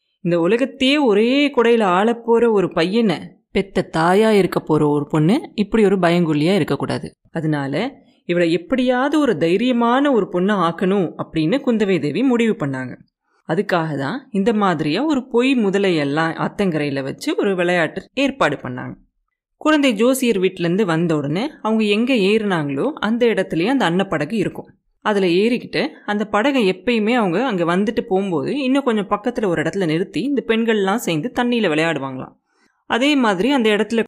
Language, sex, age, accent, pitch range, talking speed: Tamil, female, 20-39, native, 170-240 Hz, 140 wpm